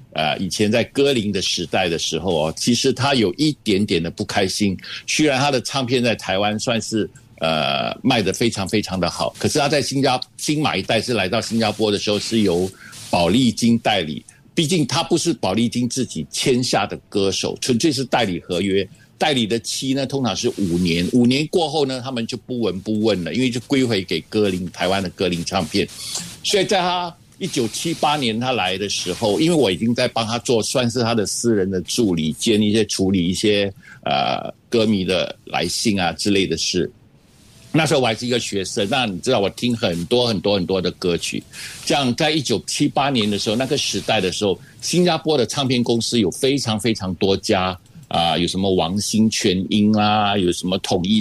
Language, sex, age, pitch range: Chinese, male, 60-79, 95-130 Hz